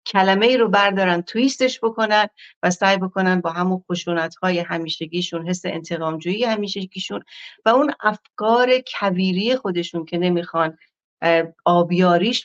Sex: female